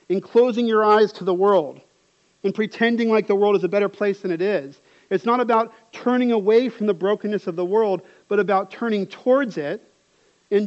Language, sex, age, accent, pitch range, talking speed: English, male, 40-59, American, 190-230 Hz, 200 wpm